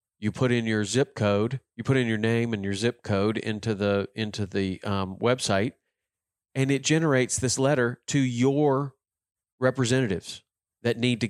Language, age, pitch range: English, 40-59, 100-130 Hz